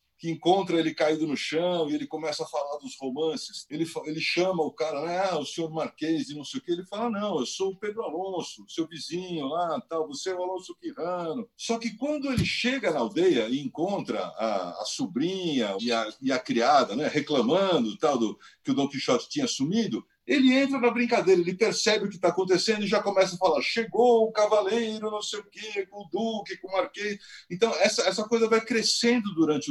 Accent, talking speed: Brazilian, 210 wpm